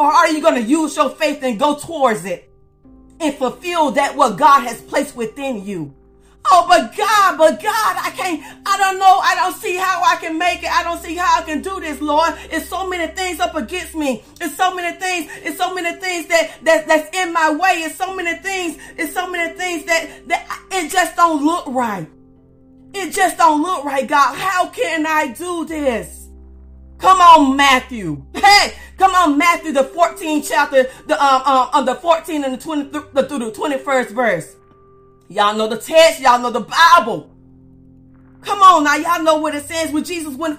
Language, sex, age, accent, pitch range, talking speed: English, female, 40-59, American, 285-350 Hz, 205 wpm